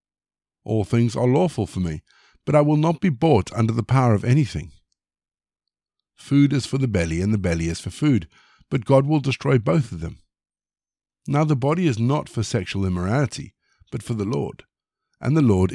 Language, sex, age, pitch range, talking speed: English, male, 50-69, 95-140 Hz, 190 wpm